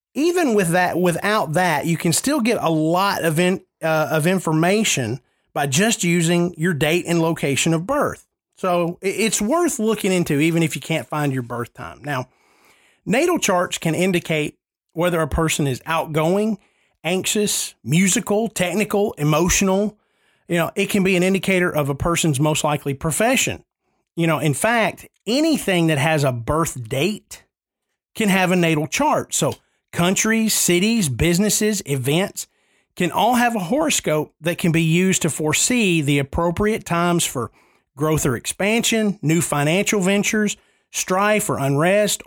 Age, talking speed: 30-49, 155 wpm